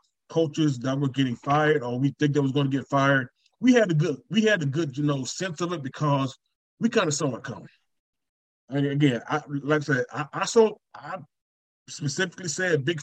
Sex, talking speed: male, 215 wpm